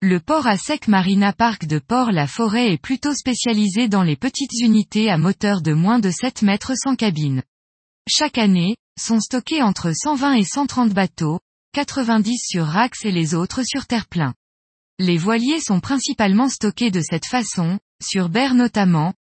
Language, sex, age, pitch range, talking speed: French, female, 20-39, 175-245 Hz, 160 wpm